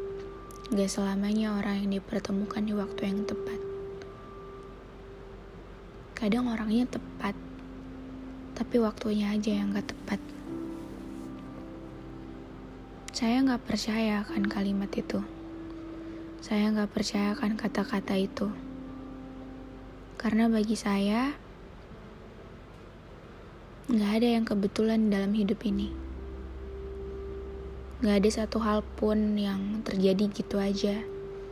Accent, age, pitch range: native, 20-39, 130-215 Hz